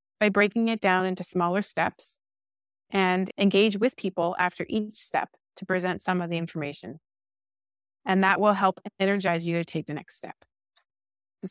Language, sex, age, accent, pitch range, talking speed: English, female, 30-49, American, 170-205 Hz, 165 wpm